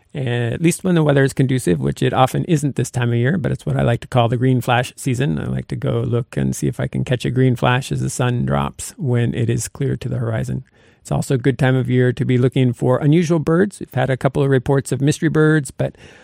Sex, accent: male, American